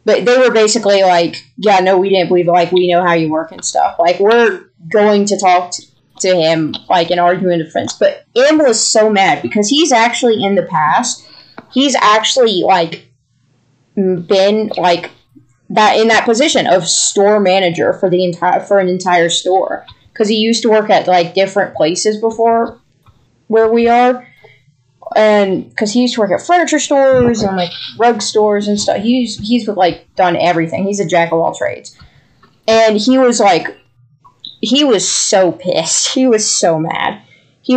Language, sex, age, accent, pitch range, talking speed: English, female, 20-39, American, 180-240 Hz, 180 wpm